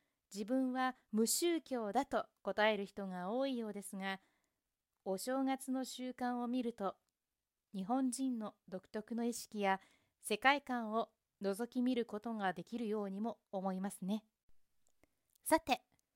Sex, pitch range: female, 195-250 Hz